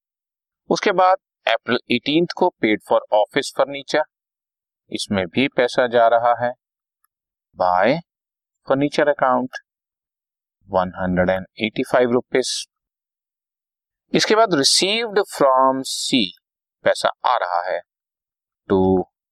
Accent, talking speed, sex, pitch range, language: native, 95 wpm, male, 100-145 Hz, Hindi